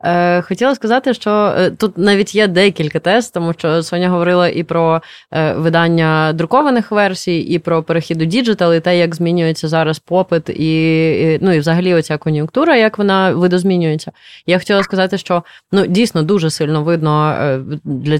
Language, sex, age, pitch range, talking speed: Ukrainian, female, 20-39, 155-185 Hz, 155 wpm